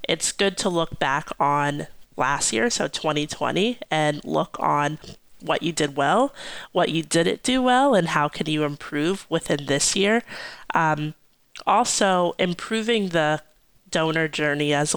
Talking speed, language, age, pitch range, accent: 150 wpm, English, 30-49, 150-190 Hz, American